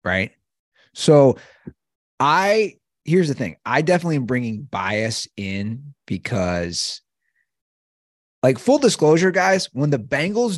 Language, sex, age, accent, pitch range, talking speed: English, male, 30-49, American, 110-160 Hz, 115 wpm